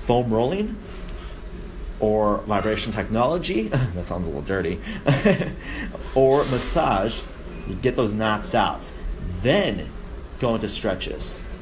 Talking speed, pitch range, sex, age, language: 110 wpm, 80-120 Hz, male, 30-49, English